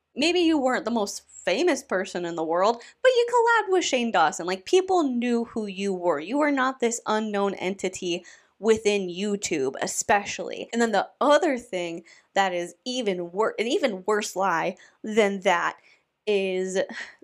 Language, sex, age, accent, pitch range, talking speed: English, female, 20-39, American, 185-245 Hz, 165 wpm